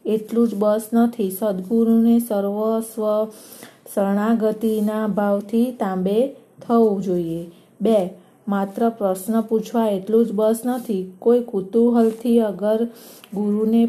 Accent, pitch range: native, 210-235 Hz